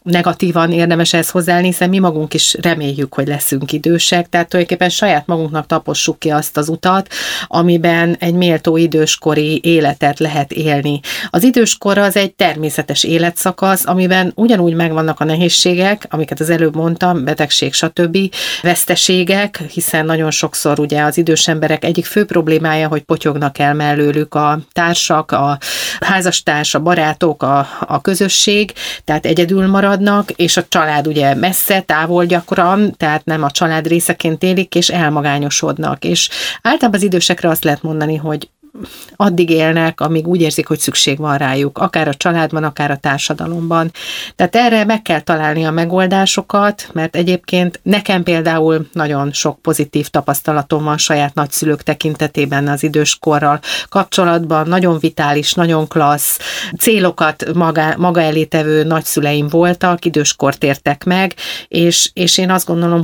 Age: 30-49